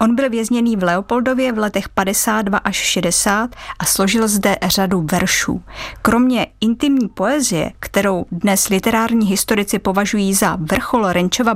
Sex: female